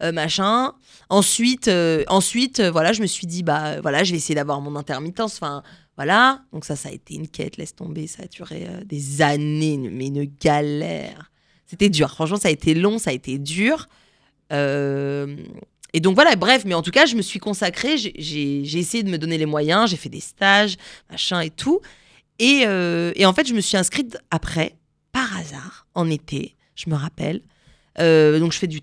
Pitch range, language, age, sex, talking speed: 155-205 Hz, French, 20-39, female, 210 wpm